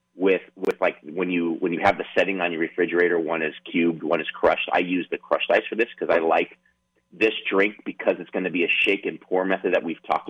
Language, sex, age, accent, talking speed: English, male, 30-49, American, 255 wpm